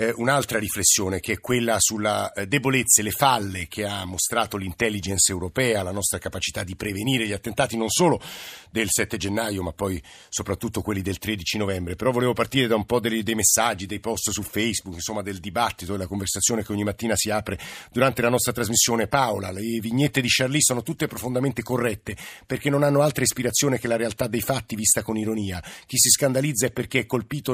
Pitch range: 105-130 Hz